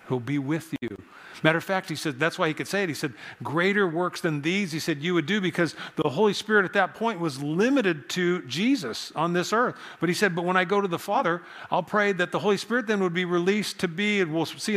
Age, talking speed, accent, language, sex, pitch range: 50-69, 265 wpm, American, English, male, 150-195 Hz